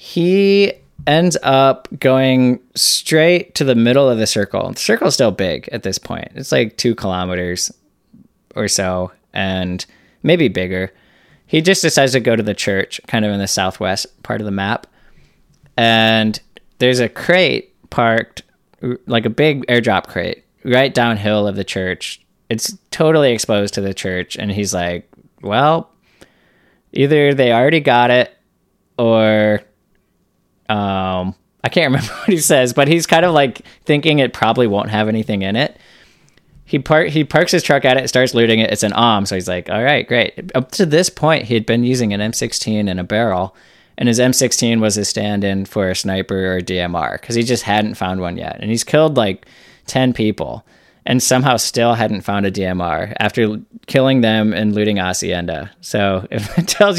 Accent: American